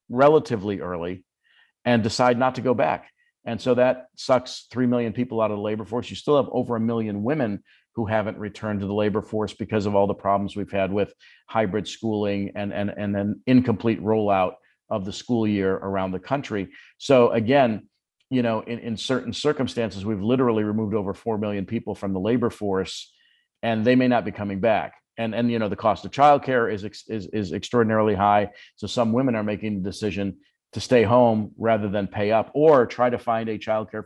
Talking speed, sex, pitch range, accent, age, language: 205 wpm, male, 105-125 Hz, American, 50-69, English